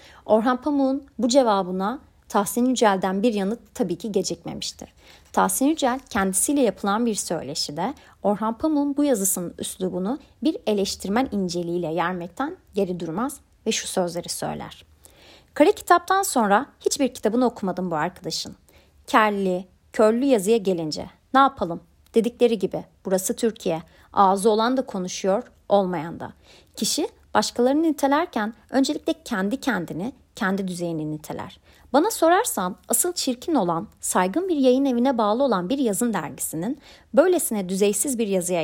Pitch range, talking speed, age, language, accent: 185-260 Hz, 130 wpm, 30-49, Turkish, native